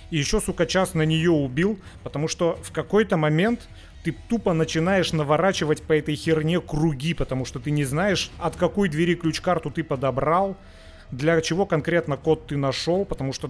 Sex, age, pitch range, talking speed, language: male, 30-49, 135-175 Hz, 175 wpm, Russian